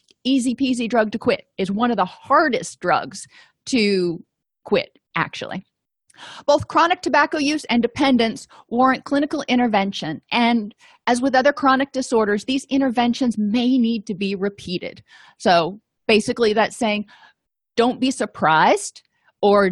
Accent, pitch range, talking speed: American, 205-255 Hz, 130 wpm